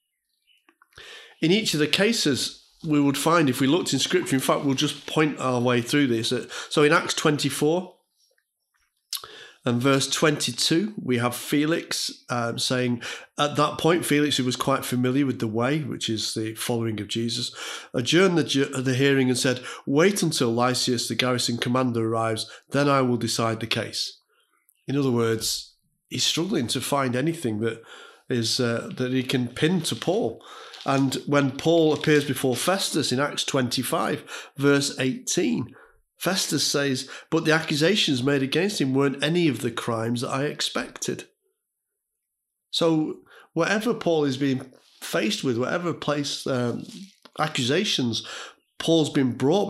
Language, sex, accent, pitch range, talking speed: English, male, British, 125-160 Hz, 155 wpm